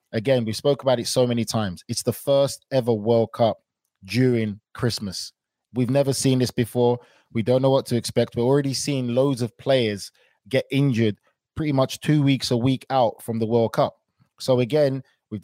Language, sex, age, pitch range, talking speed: English, male, 20-39, 115-130 Hz, 190 wpm